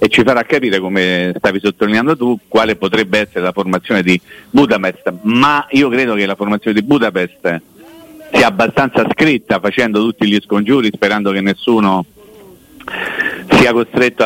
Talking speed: 145 wpm